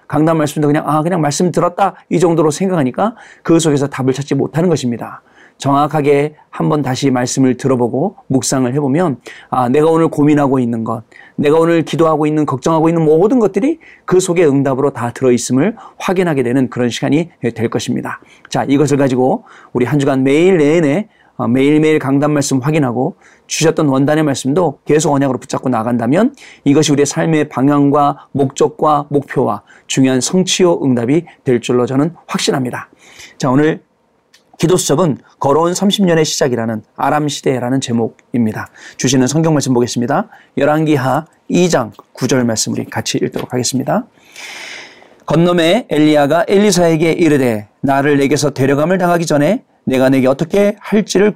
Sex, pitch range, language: male, 130-165 Hz, Korean